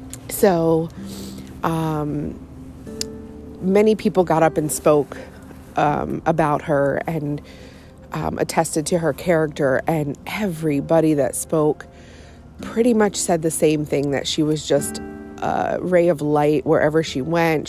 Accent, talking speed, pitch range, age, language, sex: American, 130 wpm, 140-165 Hz, 30-49, English, female